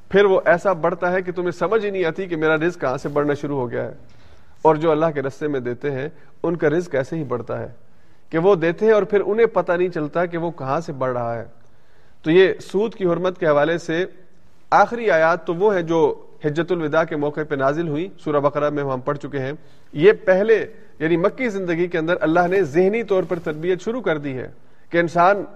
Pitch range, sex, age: 145-185 Hz, male, 40-59